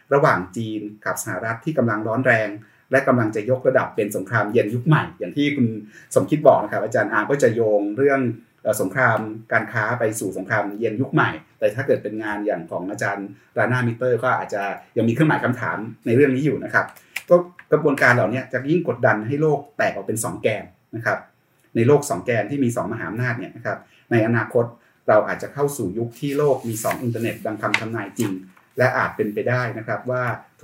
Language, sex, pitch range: Thai, male, 110-140 Hz